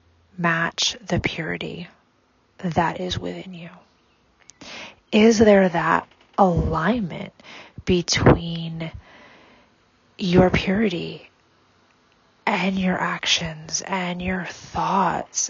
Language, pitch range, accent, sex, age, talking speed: English, 165-195 Hz, American, female, 30-49, 75 wpm